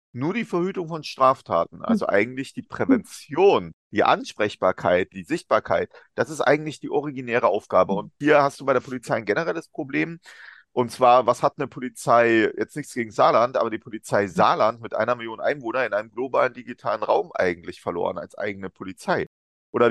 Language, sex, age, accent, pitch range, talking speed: German, male, 40-59, German, 115-150 Hz, 175 wpm